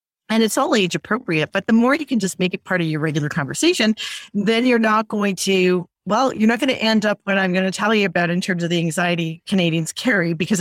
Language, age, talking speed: English, 40-59, 255 wpm